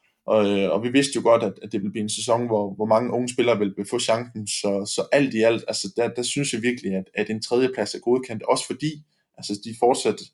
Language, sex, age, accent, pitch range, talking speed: Danish, male, 20-39, native, 105-125 Hz, 230 wpm